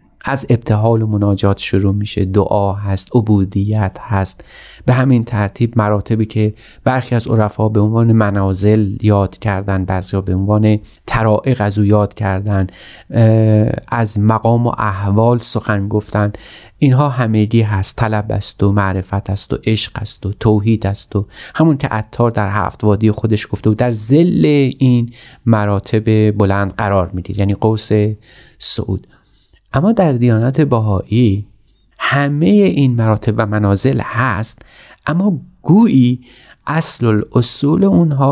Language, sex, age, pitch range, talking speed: Persian, male, 30-49, 105-130 Hz, 135 wpm